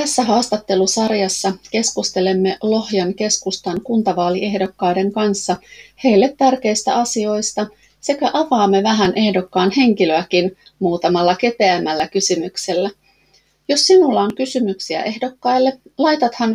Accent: native